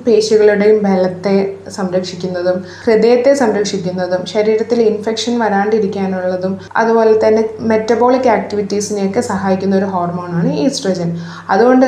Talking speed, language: 85 wpm, Malayalam